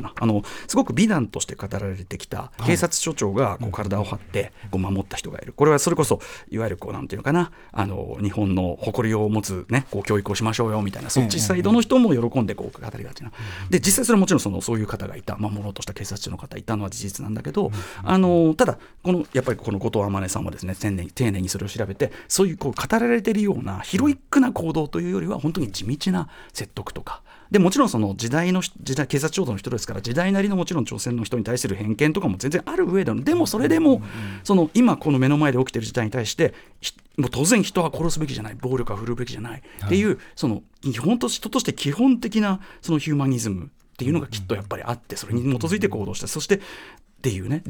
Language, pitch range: Japanese, 105-175 Hz